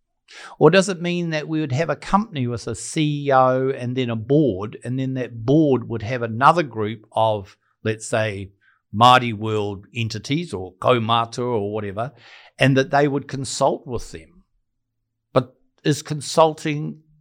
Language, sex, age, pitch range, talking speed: English, male, 50-69, 115-150 Hz, 155 wpm